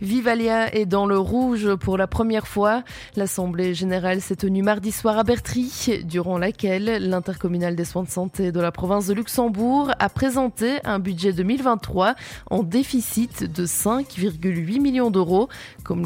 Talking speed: 155 wpm